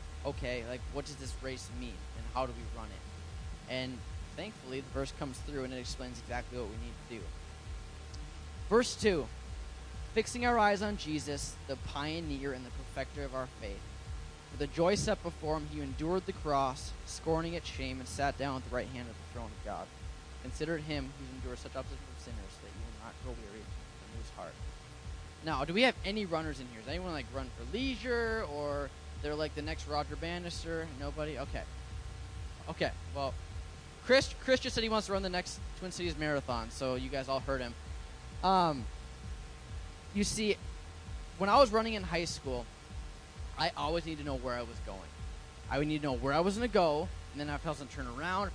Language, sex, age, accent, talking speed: English, male, 10-29, American, 210 wpm